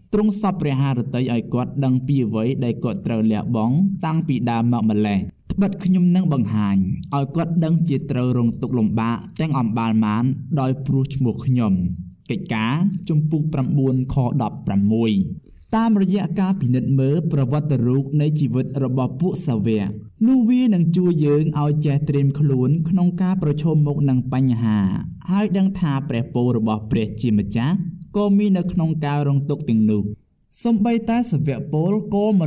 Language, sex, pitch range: English, male, 120-175 Hz